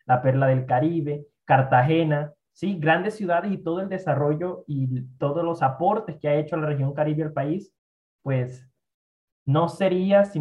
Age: 20-39